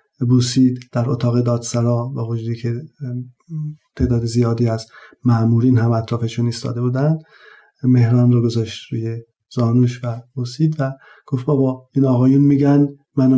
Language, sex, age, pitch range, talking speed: Persian, male, 50-69, 115-135 Hz, 130 wpm